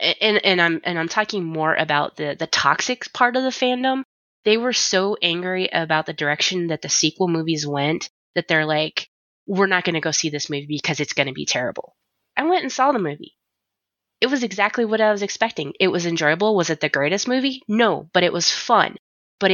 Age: 20-39